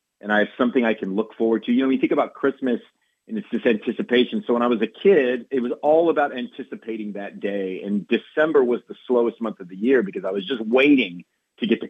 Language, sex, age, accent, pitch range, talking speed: English, male, 40-59, American, 95-125 Hz, 250 wpm